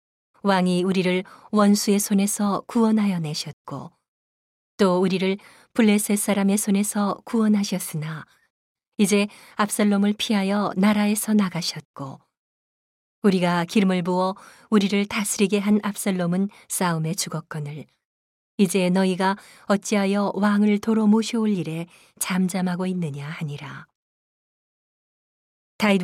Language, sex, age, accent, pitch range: Korean, female, 40-59, native, 180-210 Hz